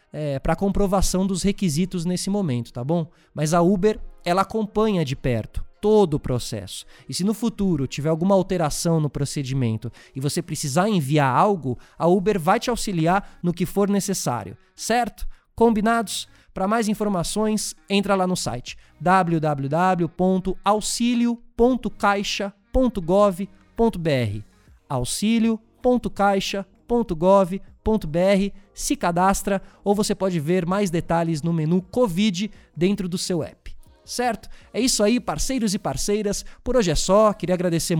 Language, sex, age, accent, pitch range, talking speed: Portuguese, male, 20-39, Brazilian, 160-205 Hz, 130 wpm